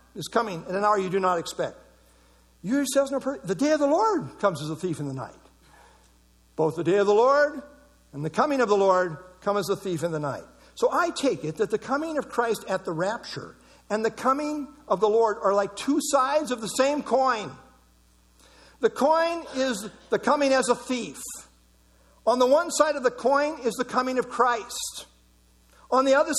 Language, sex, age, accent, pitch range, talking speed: English, male, 60-79, American, 170-260 Hz, 210 wpm